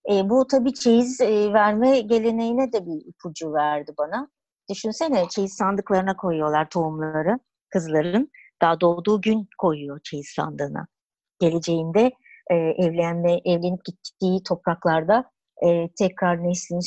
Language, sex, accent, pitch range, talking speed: Turkish, male, native, 180-240 Hz, 115 wpm